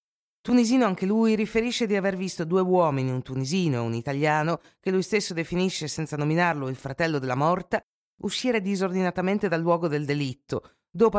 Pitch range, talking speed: 145-200 Hz, 165 wpm